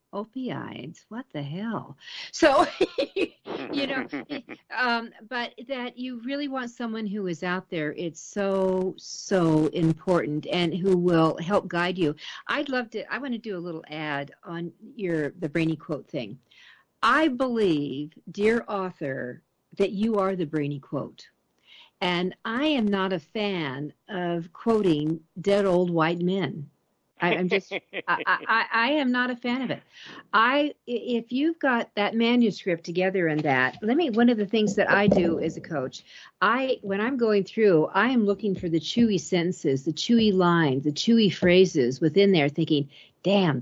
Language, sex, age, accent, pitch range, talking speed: English, female, 50-69, American, 160-225 Hz, 165 wpm